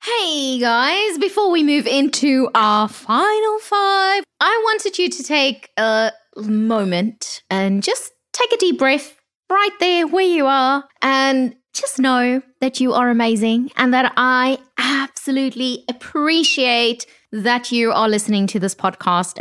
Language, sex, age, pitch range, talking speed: English, female, 20-39, 225-295 Hz, 140 wpm